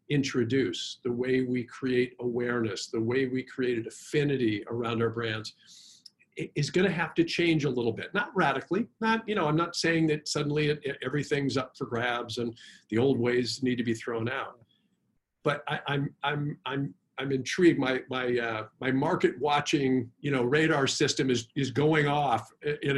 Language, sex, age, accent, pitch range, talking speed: English, male, 50-69, American, 120-145 Hz, 180 wpm